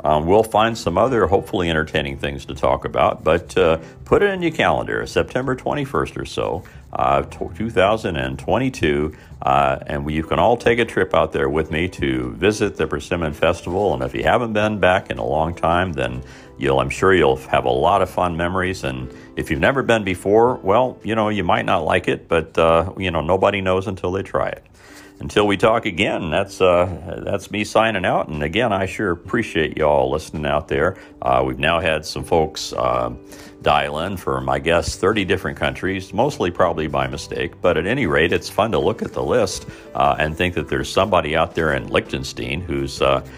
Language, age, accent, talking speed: English, 50-69, American, 205 wpm